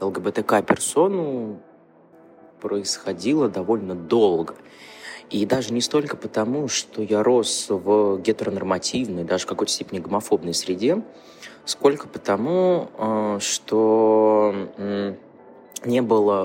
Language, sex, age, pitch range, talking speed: Russian, male, 20-39, 90-105 Hz, 90 wpm